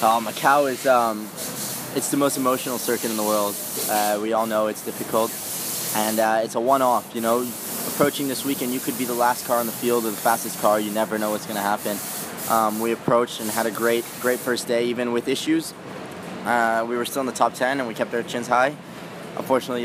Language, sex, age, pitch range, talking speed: English, male, 20-39, 110-120 Hz, 225 wpm